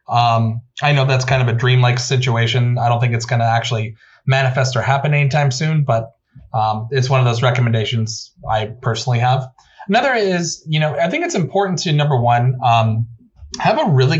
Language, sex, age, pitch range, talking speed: English, male, 30-49, 120-145 Hz, 190 wpm